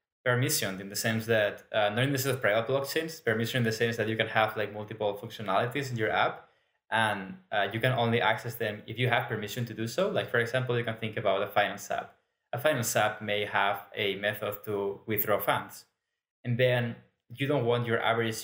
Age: 20-39